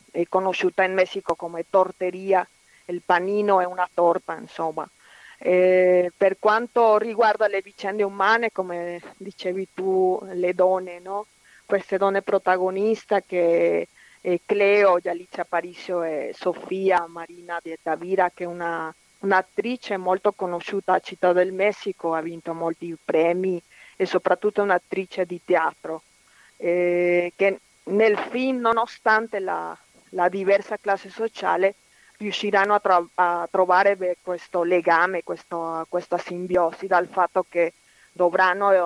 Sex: female